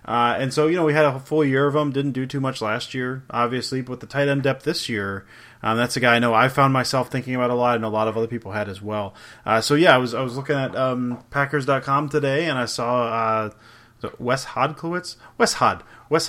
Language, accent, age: English, American, 30-49